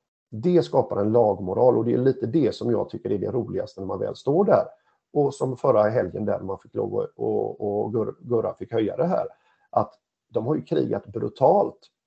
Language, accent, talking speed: Swedish, native, 205 wpm